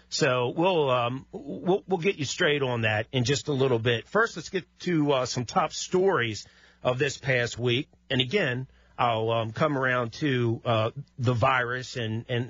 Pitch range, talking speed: 115-145 Hz, 185 wpm